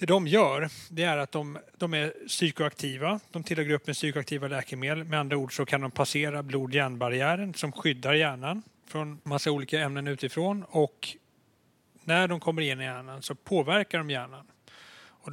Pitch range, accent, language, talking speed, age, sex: 140-170 Hz, native, Swedish, 170 wpm, 30-49, male